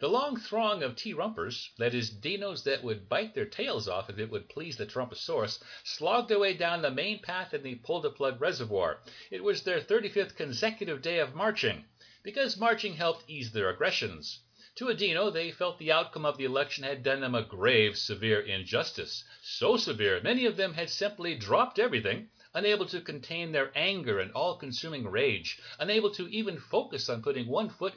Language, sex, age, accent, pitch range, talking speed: English, male, 60-79, American, 135-220 Hz, 185 wpm